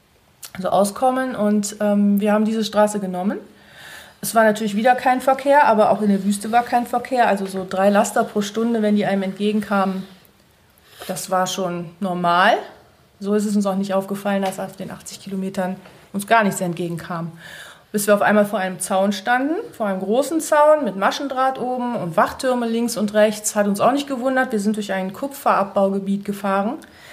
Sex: female